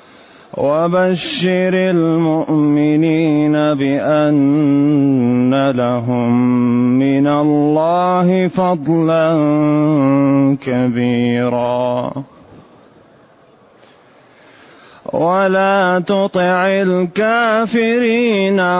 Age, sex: 30-49, male